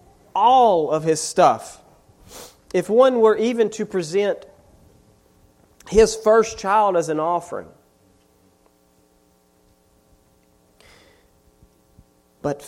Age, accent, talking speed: 40-59, American, 80 wpm